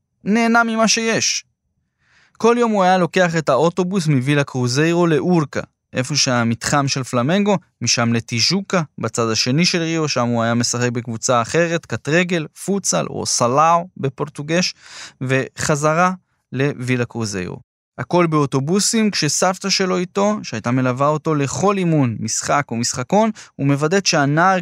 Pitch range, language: 120-170 Hz, Hebrew